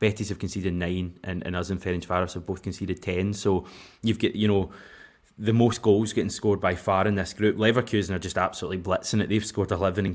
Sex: male